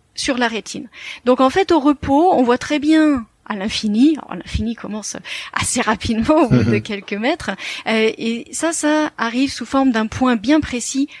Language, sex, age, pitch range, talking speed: French, female, 30-49, 225-275 Hz, 180 wpm